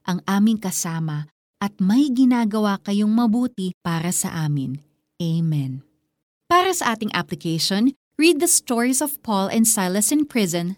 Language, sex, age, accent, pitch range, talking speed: Filipino, female, 30-49, native, 180-245 Hz, 140 wpm